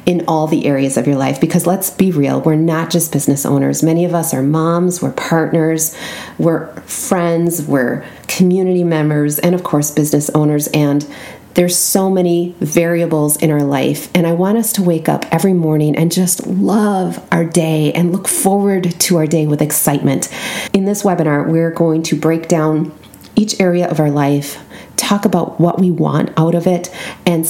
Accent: American